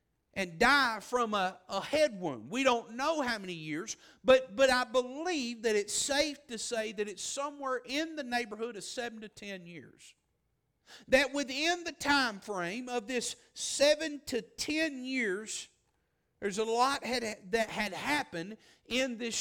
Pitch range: 215-275 Hz